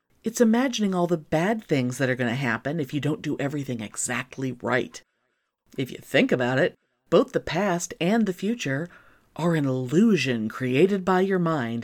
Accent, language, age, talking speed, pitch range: American, English, 40-59, 180 wpm, 135-215 Hz